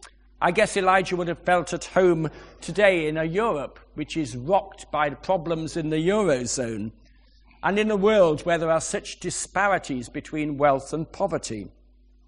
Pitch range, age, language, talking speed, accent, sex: 150-200 Hz, 50-69, English, 165 wpm, British, male